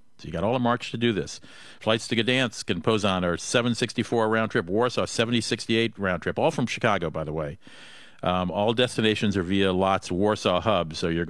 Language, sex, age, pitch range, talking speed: English, male, 50-69, 90-125 Hz, 200 wpm